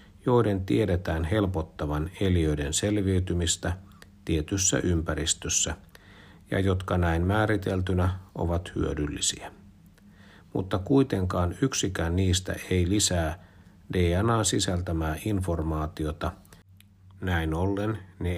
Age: 60-79